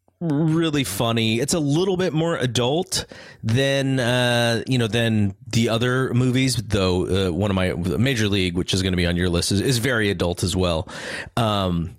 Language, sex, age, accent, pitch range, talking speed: English, male, 30-49, American, 100-135 Hz, 190 wpm